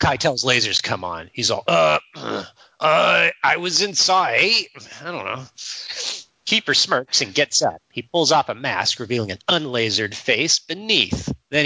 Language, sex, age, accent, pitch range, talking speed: English, male, 30-49, American, 110-150 Hz, 155 wpm